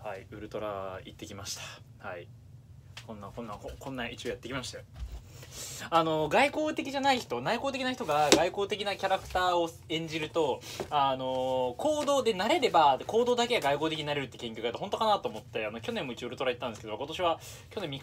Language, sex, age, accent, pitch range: Japanese, male, 20-39, native, 120-175 Hz